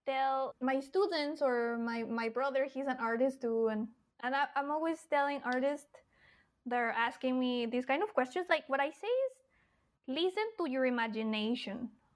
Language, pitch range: Chinese, 245-300 Hz